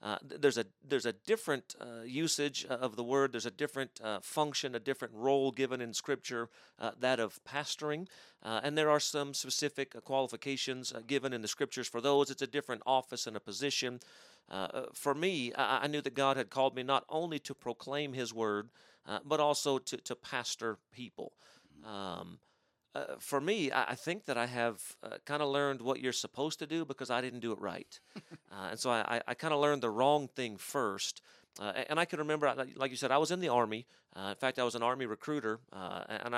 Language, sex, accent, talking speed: English, male, American, 210 wpm